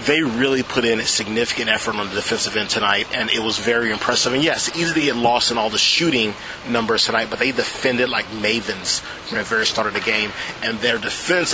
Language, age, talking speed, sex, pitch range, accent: English, 30-49, 230 wpm, male, 115-145 Hz, American